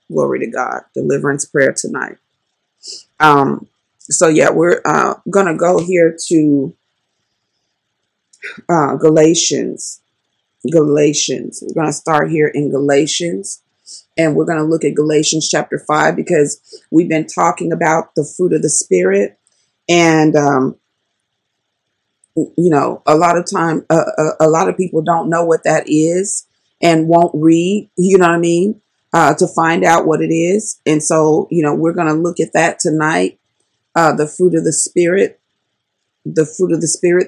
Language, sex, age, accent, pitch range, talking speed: English, female, 30-49, American, 155-175 Hz, 160 wpm